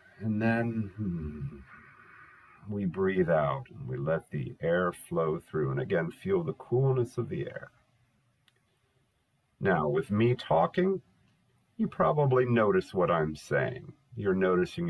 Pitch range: 100-140 Hz